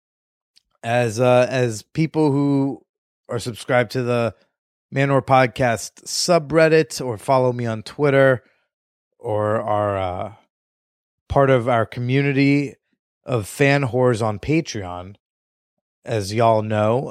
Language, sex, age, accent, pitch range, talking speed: English, male, 30-49, American, 110-140 Hz, 110 wpm